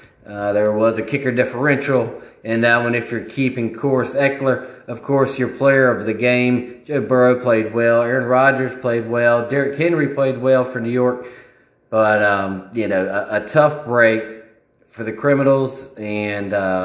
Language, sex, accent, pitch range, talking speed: Dutch, male, American, 110-140 Hz, 170 wpm